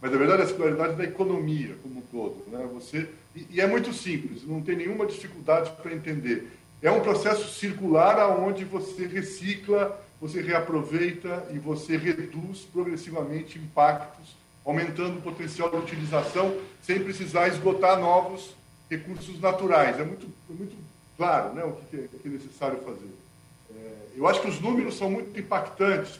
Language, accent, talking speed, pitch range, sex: Portuguese, Brazilian, 150 wpm, 150-185 Hz, male